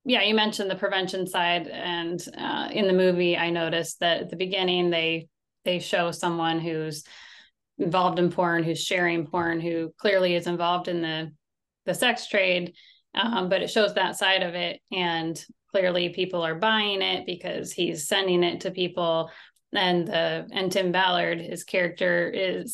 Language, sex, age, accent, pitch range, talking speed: English, female, 20-39, American, 175-195 Hz, 170 wpm